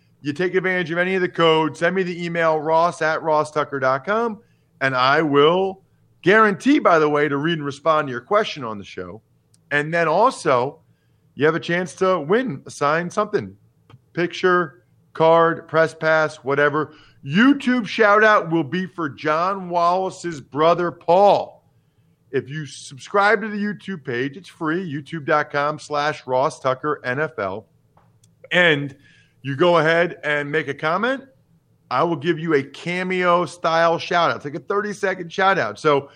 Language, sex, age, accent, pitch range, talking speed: English, male, 40-59, American, 145-185 Hz, 160 wpm